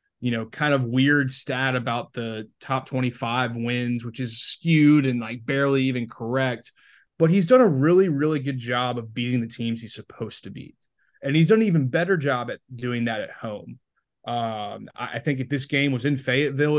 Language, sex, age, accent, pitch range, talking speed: English, male, 20-39, American, 110-135 Hz, 200 wpm